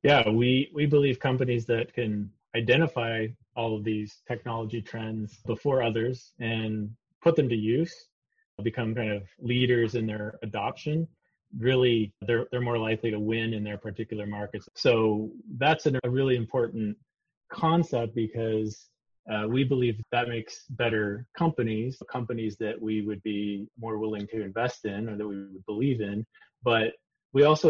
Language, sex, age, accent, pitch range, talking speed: English, male, 30-49, American, 105-120 Hz, 160 wpm